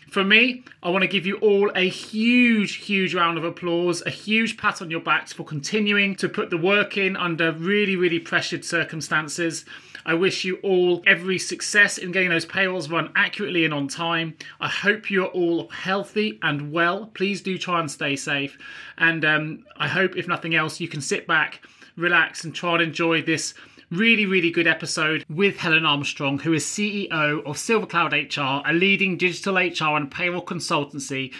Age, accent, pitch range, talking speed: 30-49, British, 150-190 Hz, 185 wpm